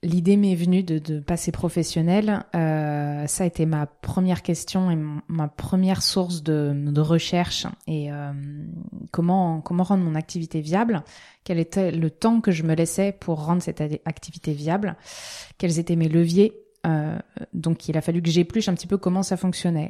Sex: female